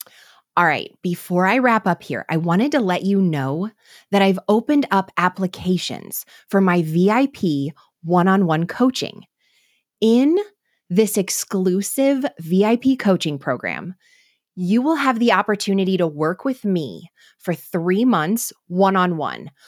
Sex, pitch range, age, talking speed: female, 180-235 Hz, 20-39, 130 wpm